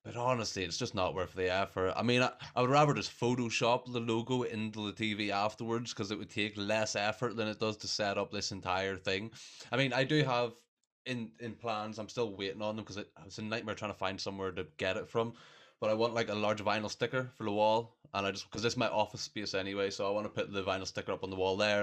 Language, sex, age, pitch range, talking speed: English, male, 20-39, 100-115 Hz, 265 wpm